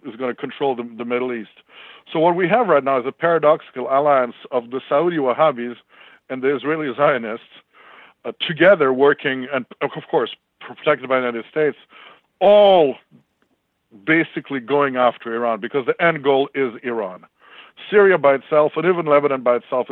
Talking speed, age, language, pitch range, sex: 170 wpm, 50-69, English, 125-145 Hz, male